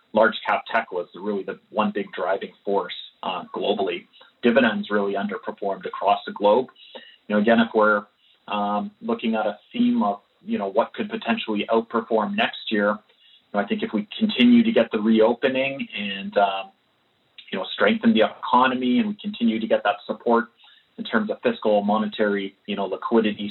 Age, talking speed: 30-49, 180 wpm